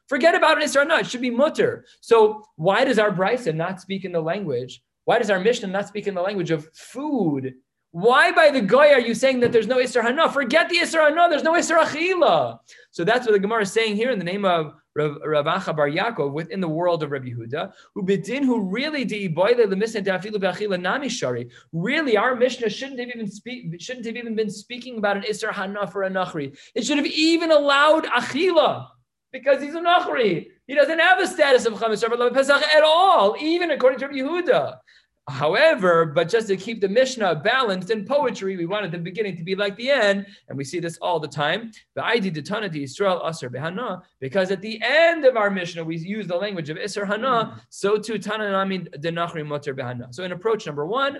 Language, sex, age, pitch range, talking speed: English, male, 30-49, 170-255 Hz, 185 wpm